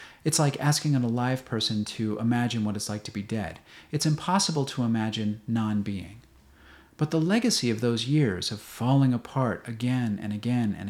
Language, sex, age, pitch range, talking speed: English, male, 40-59, 105-135 Hz, 175 wpm